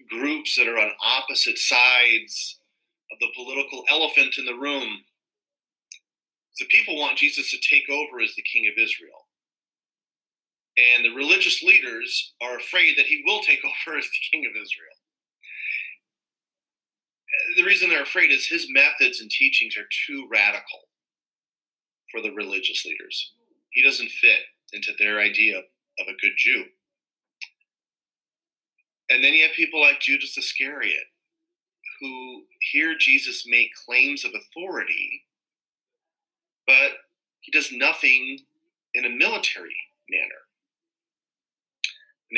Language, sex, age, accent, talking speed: English, male, 30-49, American, 130 wpm